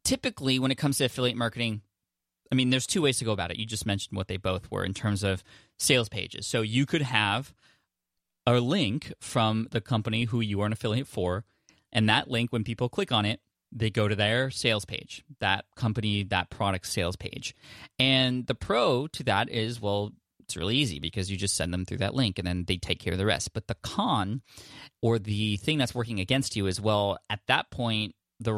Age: 20-39